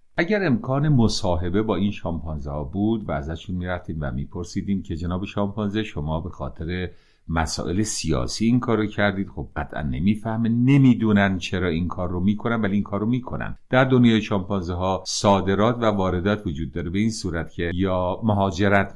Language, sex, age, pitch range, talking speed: Persian, male, 50-69, 85-115 Hz, 165 wpm